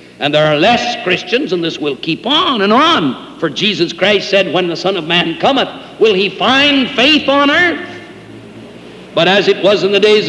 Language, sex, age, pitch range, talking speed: English, male, 60-79, 155-210 Hz, 205 wpm